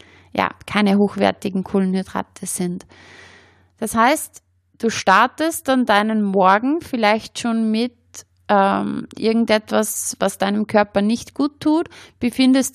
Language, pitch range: German, 190-235 Hz